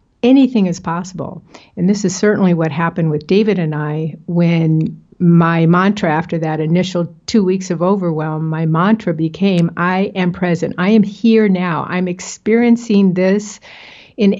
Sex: female